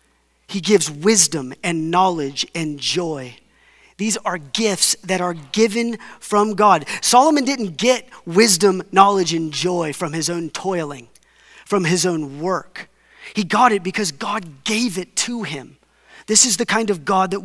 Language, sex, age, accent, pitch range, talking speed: English, male, 30-49, American, 155-220 Hz, 160 wpm